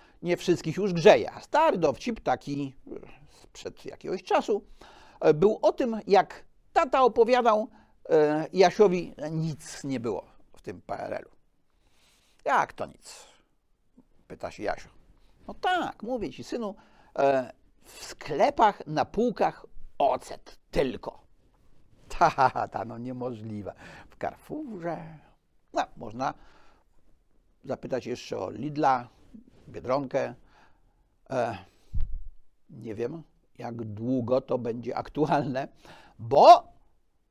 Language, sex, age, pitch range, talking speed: Polish, male, 60-79, 125-185 Hz, 110 wpm